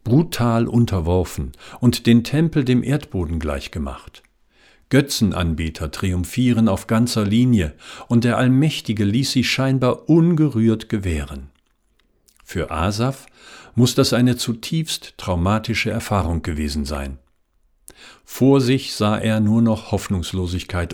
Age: 50-69